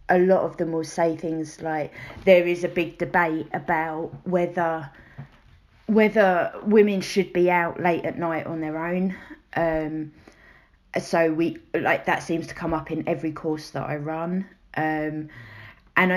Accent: British